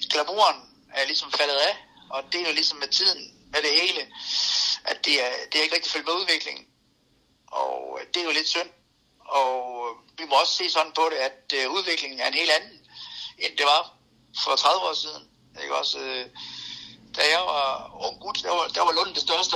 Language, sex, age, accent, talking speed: Danish, male, 60-79, native, 205 wpm